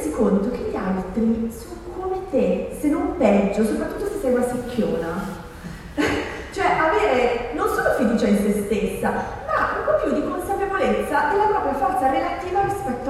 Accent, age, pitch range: native, 30-49, 205-275 Hz